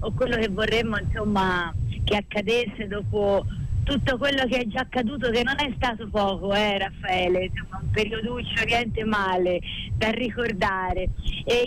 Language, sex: Italian, female